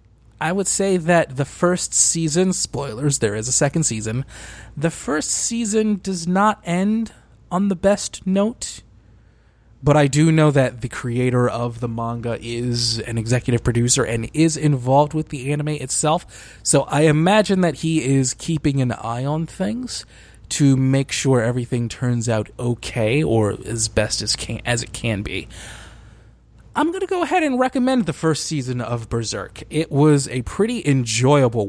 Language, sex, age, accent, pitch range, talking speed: English, male, 20-39, American, 115-170 Hz, 165 wpm